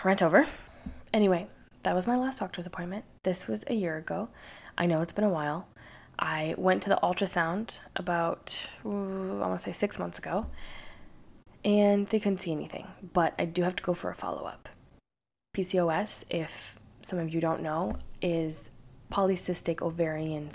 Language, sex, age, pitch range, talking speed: English, female, 10-29, 160-190 Hz, 165 wpm